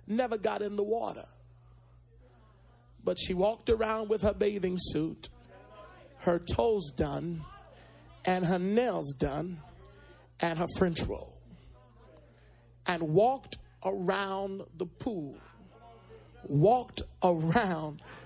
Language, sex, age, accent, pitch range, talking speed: English, male, 40-59, American, 160-225 Hz, 100 wpm